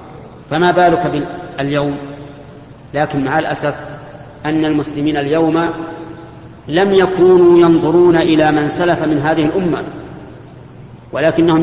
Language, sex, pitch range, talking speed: Arabic, male, 145-170 Hz, 105 wpm